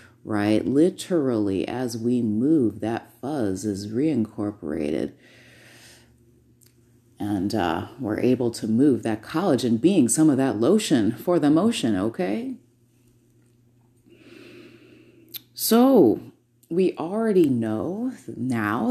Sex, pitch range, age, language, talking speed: female, 115-130 Hz, 30-49, English, 100 wpm